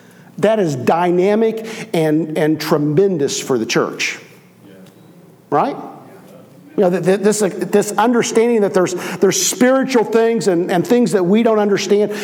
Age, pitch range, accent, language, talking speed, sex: 50-69, 155-225 Hz, American, English, 130 wpm, male